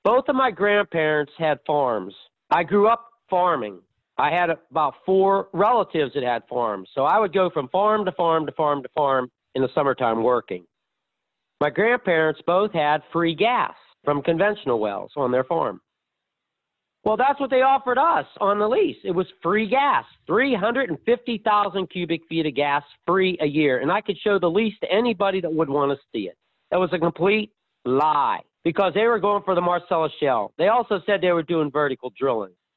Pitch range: 160-210 Hz